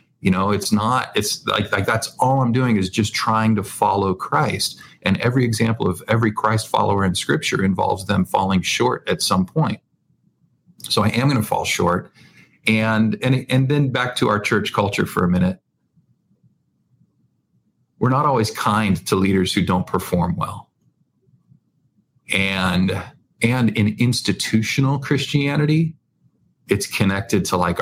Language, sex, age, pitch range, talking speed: English, male, 40-59, 90-110 Hz, 155 wpm